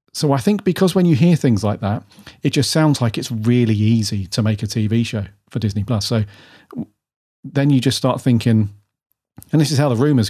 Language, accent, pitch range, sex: English, British, 110-130 Hz, male